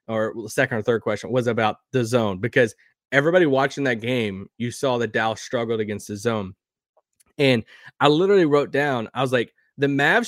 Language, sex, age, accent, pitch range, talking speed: English, male, 20-39, American, 120-170 Hz, 185 wpm